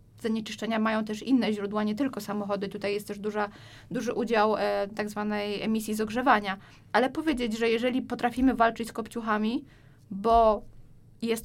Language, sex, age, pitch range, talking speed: Polish, female, 20-39, 215-250 Hz, 145 wpm